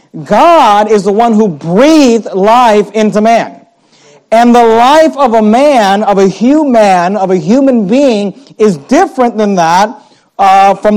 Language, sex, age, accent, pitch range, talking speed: English, male, 50-69, American, 180-235 Hz, 155 wpm